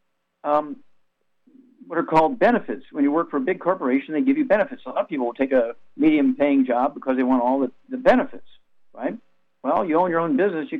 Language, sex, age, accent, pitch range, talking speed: English, male, 50-69, American, 125-195 Hz, 220 wpm